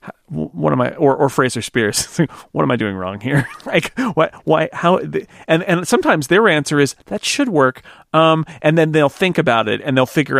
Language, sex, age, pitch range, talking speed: English, male, 40-59, 115-145 Hz, 210 wpm